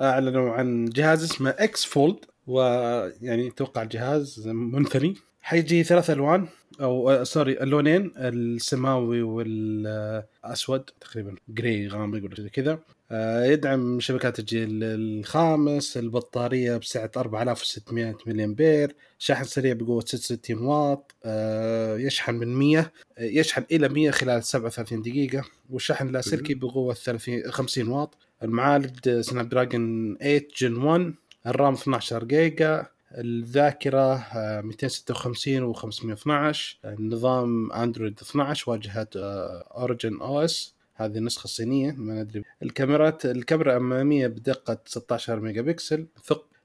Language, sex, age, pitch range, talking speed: Arabic, male, 30-49, 115-145 Hz, 110 wpm